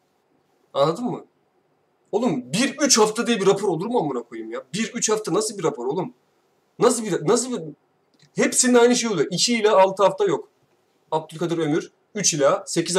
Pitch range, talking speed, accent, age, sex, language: 140-195 Hz, 170 wpm, native, 30-49, male, Turkish